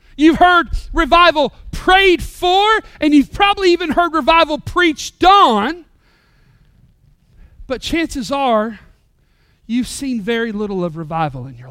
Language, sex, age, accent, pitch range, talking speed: English, male, 40-59, American, 245-330 Hz, 125 wpm